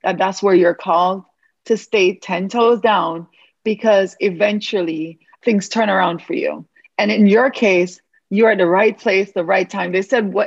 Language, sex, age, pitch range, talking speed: English, female, 40-59, 185-225 Hz, 185 wpm